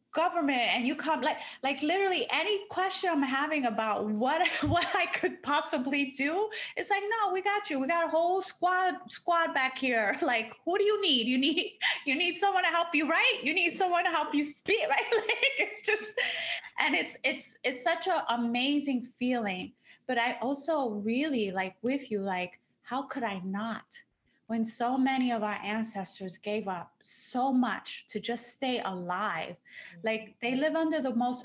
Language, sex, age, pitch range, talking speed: English, female, 20-39, 220-320 Hz, 185 wpm